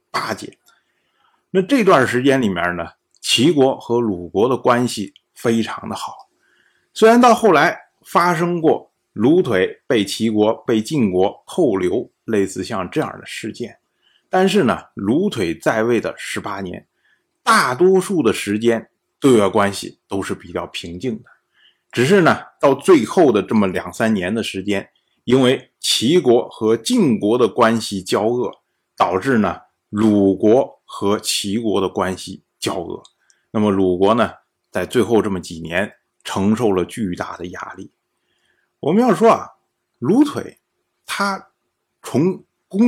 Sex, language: male, Chinese